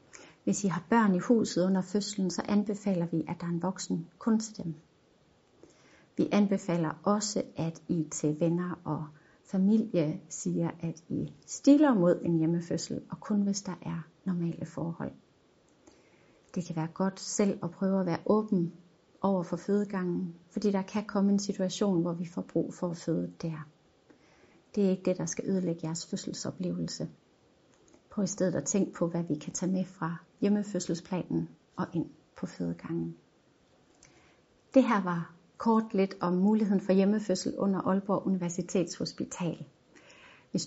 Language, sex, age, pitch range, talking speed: Danish, female, 30-49, 170-200 Hz, 160 wpm